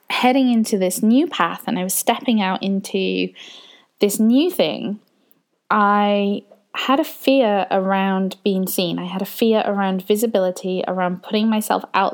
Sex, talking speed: female, 155 wpm